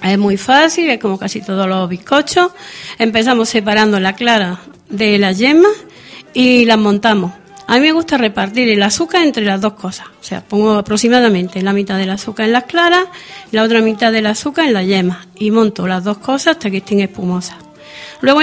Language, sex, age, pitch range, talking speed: Spanish, female, 40-59, 200-275 Hz, 190 wpm